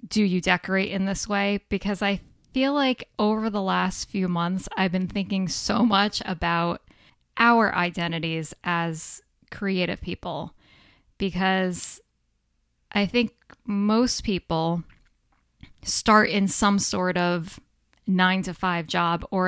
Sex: female